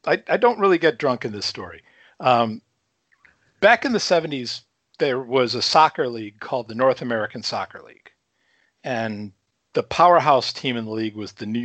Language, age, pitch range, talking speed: English, 50-69, 115-155 Hz, 180 wpm